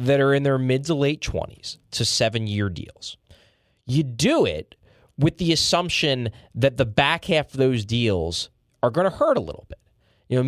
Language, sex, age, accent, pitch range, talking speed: English, male, 20-39, American, 100-165 Hz, 195 wpm